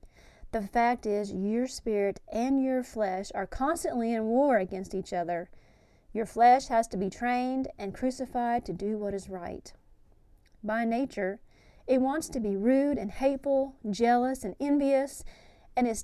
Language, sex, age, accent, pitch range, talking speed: English, female, 40-59, American, 205-265 Hz, 155 wpm